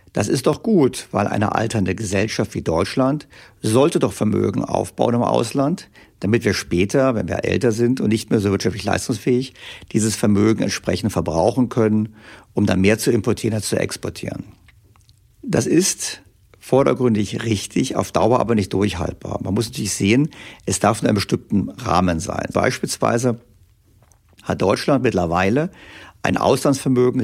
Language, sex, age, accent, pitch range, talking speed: German, male, 50-69, German, 95-120 Hz, 150 wpm